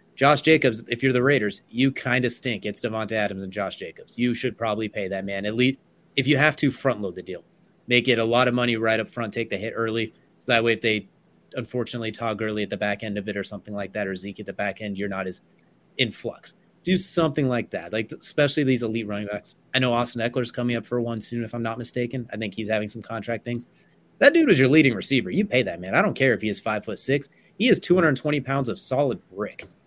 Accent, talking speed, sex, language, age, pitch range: American, 255 wpm, male, English, 30-49, 110-135 Hz